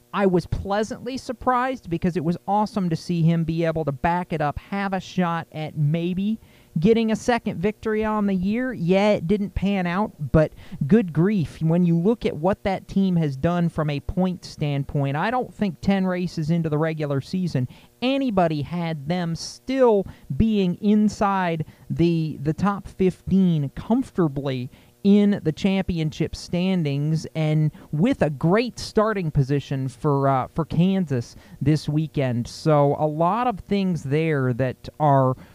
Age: 40-59